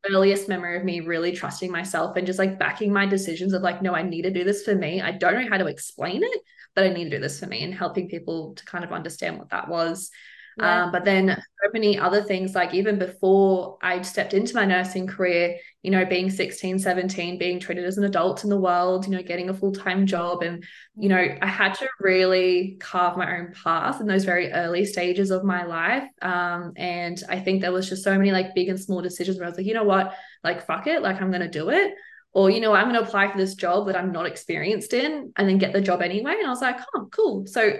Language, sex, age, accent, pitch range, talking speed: English, female, 20-39, Australian, 180-205 Hz, 255 wpm